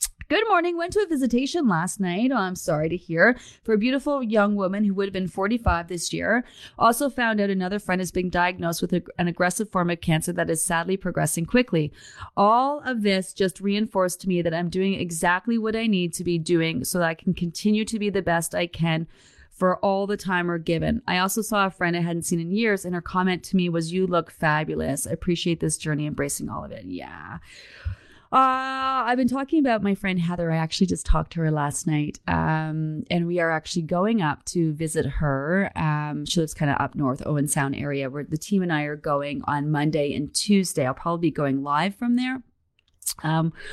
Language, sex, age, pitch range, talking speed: English, female, 30-49, 160-205 Hz, 220 wpm